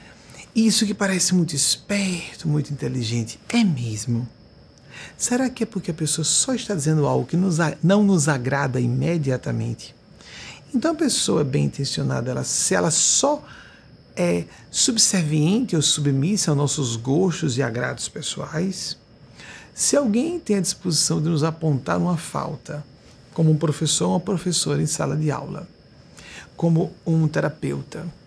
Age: 60-79